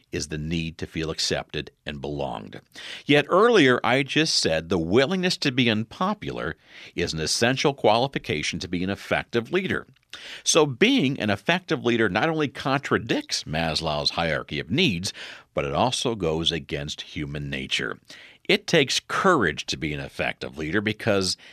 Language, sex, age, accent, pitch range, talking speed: English, male, 50-69, American, 85-130 Hz, 155 wpm